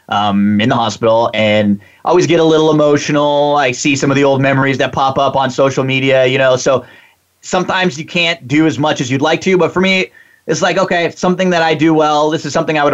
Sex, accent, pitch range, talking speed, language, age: male, American, 125-190 Hz, 240 wpm, English, 30-49